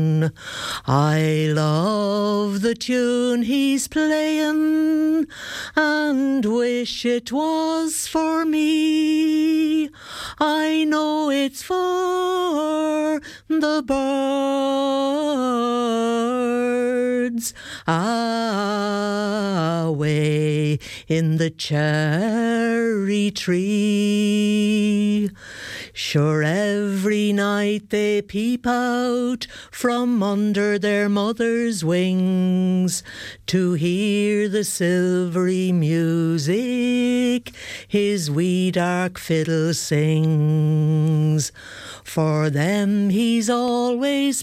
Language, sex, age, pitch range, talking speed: English, female, 50-69, 185-280 Hz, 65 wpm